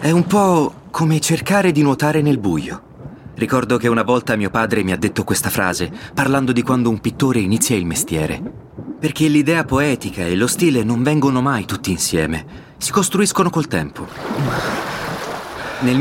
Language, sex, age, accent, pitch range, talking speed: Italian, male, 30-49, native, 100-145 Hz, 165 wpm